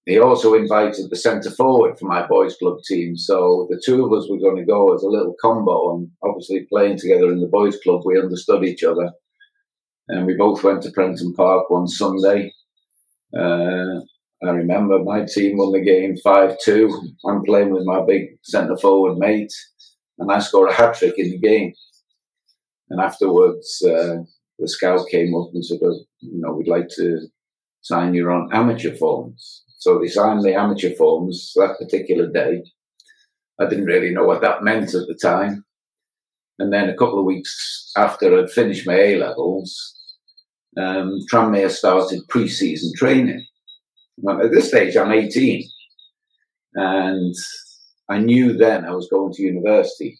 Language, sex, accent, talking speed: English, male, British, 165 wpm